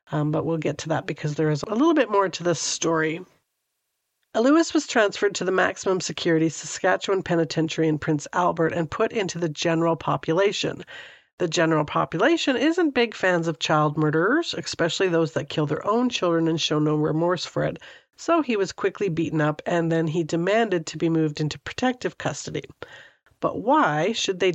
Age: 50-69